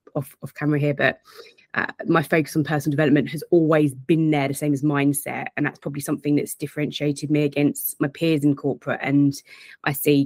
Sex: female